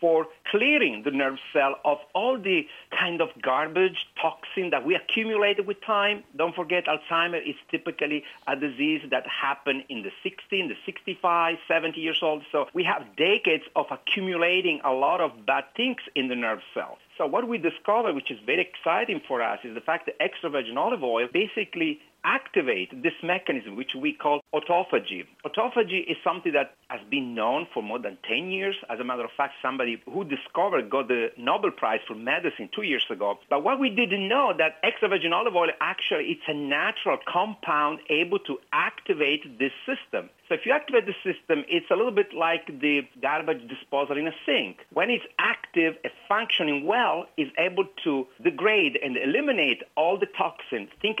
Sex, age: male, 50-69